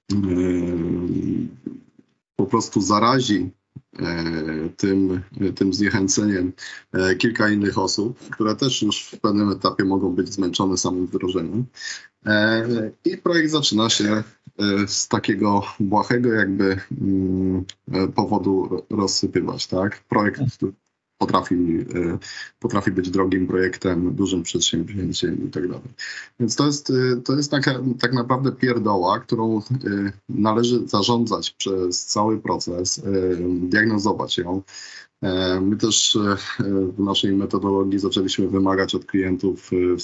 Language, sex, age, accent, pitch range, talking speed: Polish, male, 20-39, native, 90-110 Hz, 95 wpm